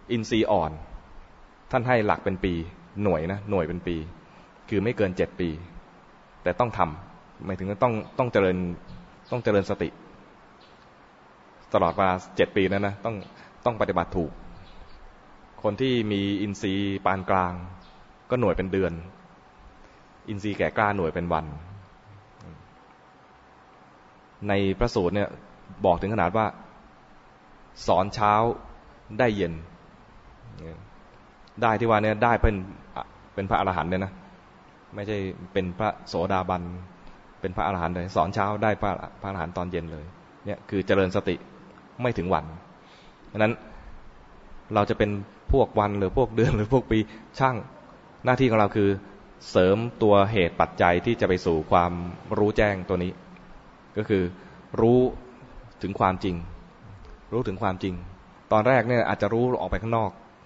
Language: English